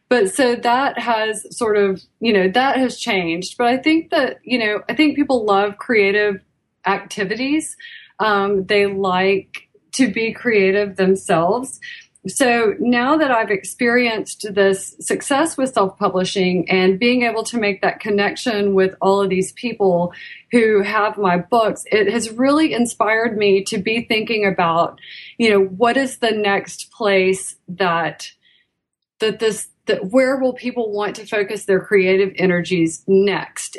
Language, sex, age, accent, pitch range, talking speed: English, female, 30-49, American, 190-235 Hz, 150 wpm